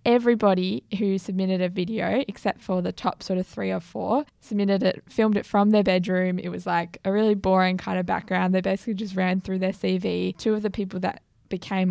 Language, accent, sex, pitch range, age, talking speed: English, Australian, female, 185-215 Hz, 10-29, 215 wpm